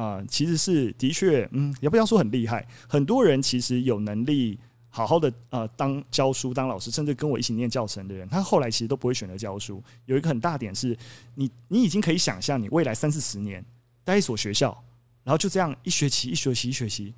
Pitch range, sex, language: 115-155 Hz, male, Chinese